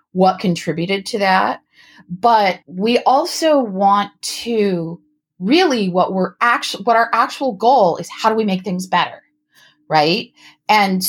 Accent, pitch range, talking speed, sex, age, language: American, 185-250 Hz, 140 wpm, female, 30-49, English